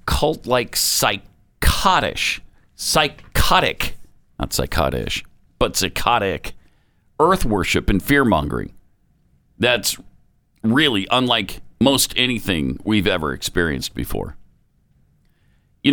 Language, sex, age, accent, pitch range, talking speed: English, male, 50-69, American, 100-150 Hz, 80 wpm